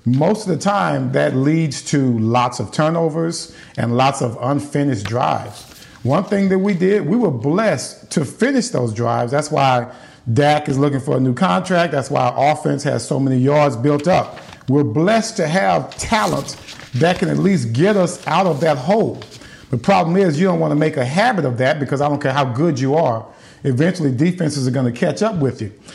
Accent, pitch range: American, 140-195 Hz